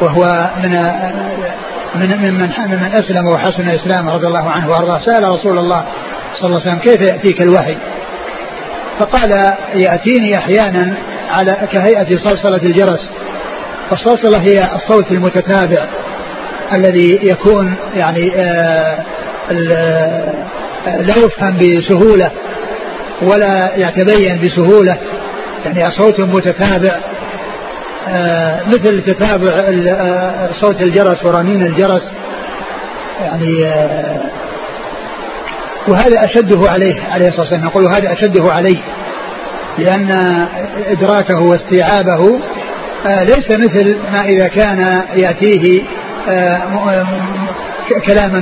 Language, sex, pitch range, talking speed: Arabic, male, 180-200 Hz, 90 wpm